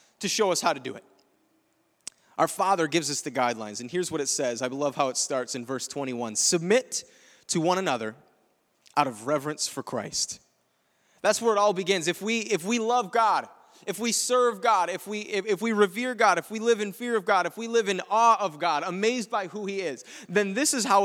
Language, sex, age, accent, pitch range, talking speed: English, male, 30-49, American, 160-230 Hz, 230 wpm